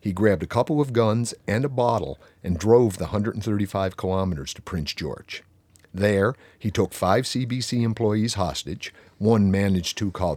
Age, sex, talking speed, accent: 50-69, male, 160 wpm, American